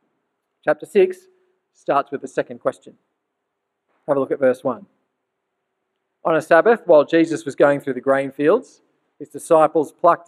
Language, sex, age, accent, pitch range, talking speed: English, male, 40-59, Australian, 135-165 Hz, 160 wpm